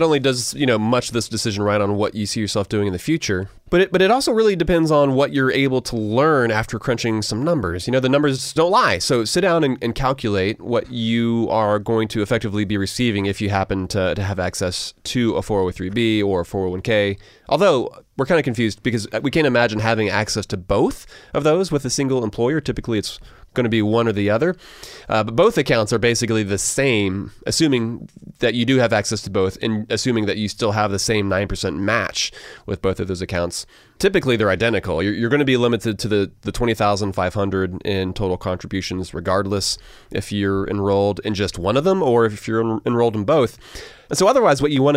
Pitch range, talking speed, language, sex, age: 100-125 Hz, 225 wpm, English, male, 30-49